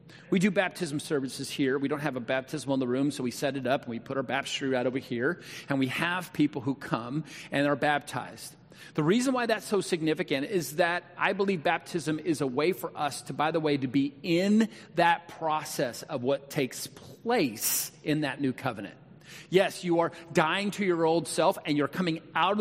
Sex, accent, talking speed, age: male, American, 215 wpm, 40-59